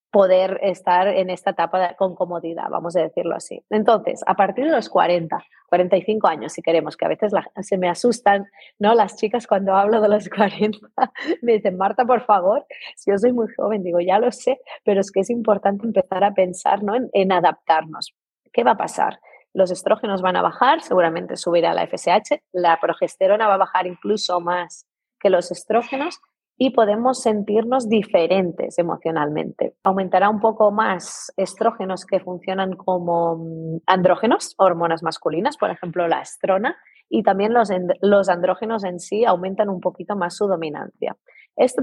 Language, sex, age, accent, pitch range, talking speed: Spanish, female, 30-49, Spanish, 180-220 Hz, 170 wpm